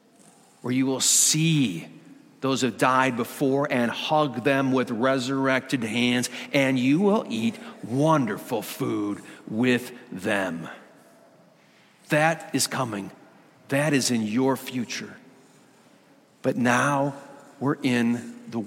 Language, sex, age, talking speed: English, male, 50-69, 115 wpm